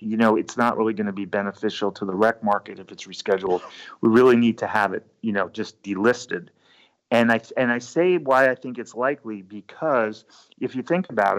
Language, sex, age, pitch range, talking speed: English, male, 30-49, 110-130 Hz, 215 wpm